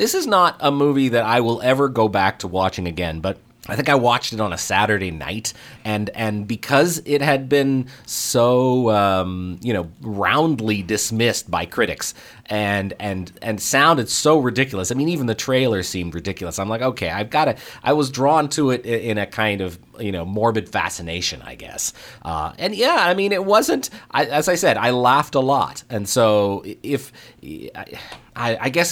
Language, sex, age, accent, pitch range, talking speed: English, male, 30-49, American, 100-135 Hz, 195 wpm